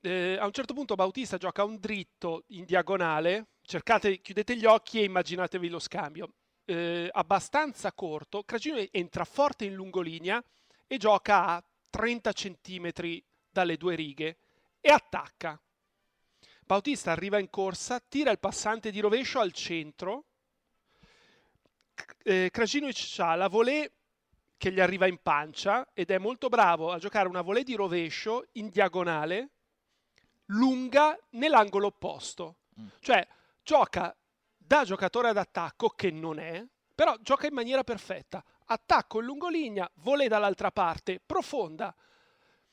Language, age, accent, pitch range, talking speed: Italian, 40-59, native, 180-245 Hz, 130 wpm